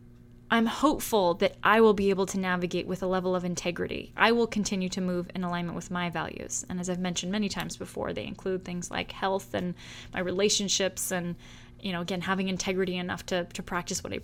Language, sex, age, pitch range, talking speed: English, female, 10-29, 180-235 Hz, 215 wpm